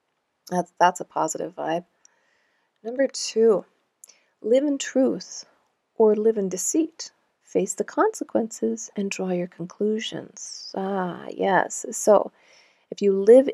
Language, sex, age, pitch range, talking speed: English, female, 40-59, 185-240 Hz, 120 wpm